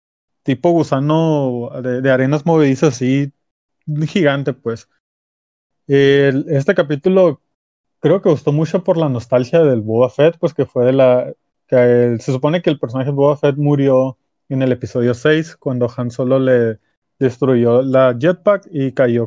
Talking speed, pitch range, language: 155 wpm, 125-145 Hz, Spanish